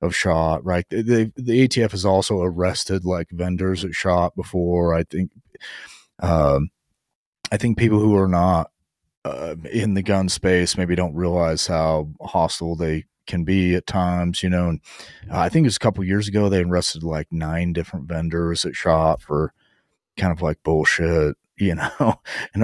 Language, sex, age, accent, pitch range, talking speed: English, male, 30-49, American, 85-105 Hz, 180 wpm